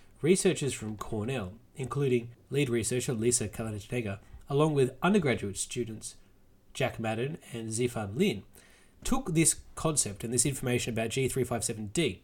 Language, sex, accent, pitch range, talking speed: English, male, Australian, 115-165 Hz, 125 wpm